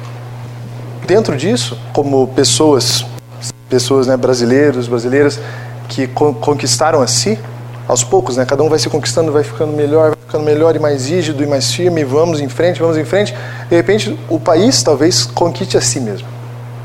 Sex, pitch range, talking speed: male, 120-145 Hz, 170 wpm